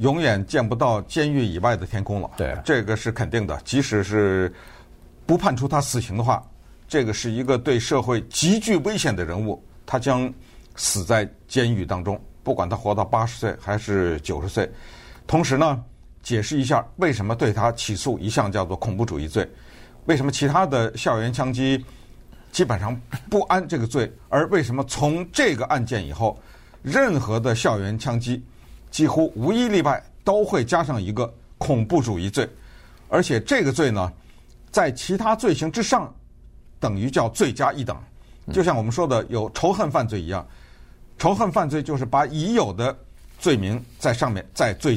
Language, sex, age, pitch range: Chinese, male, 50-69, 105-150 Hz